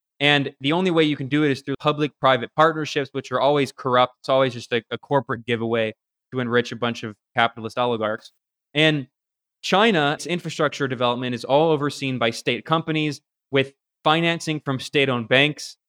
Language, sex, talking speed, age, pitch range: English, male, 170 wpm, 20-39, 125-155 Hz